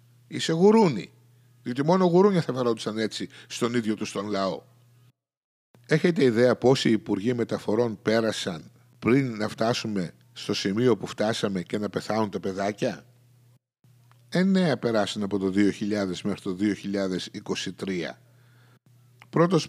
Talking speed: 120 wpm